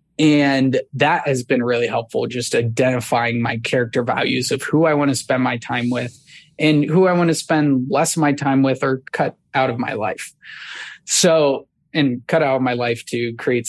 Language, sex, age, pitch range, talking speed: English, male, 20-39, 120-145 Hz, 200 wpm